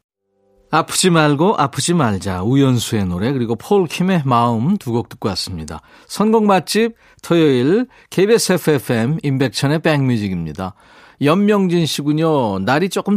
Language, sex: Korean, male